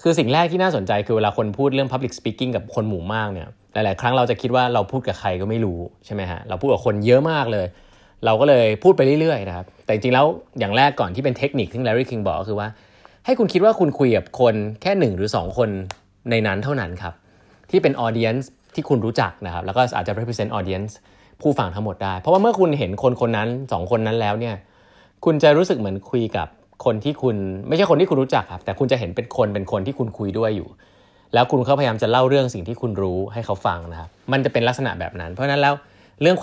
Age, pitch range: 20-39, 95-125 Hz